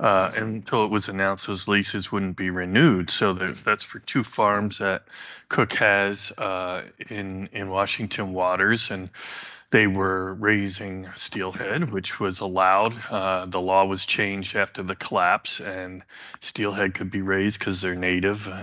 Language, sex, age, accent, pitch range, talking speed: English, male, 20-39, American, 95-115 Hz, 150 wpm